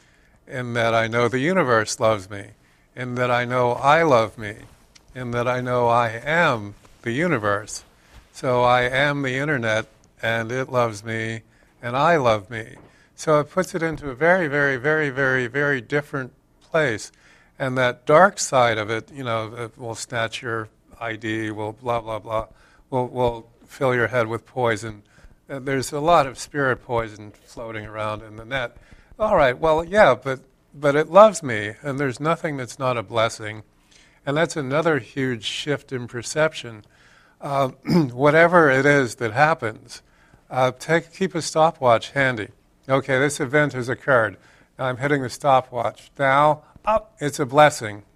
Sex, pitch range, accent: male, 115-145 Hz, American